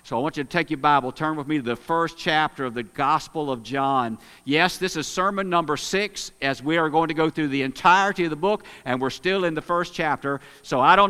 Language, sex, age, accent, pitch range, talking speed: English, male, 50-69, American, 140-190 Hz, 260 wpm